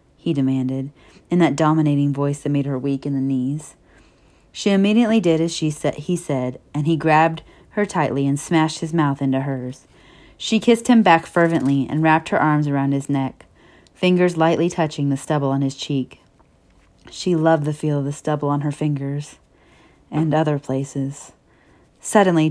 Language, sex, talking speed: English, female, 175 wpm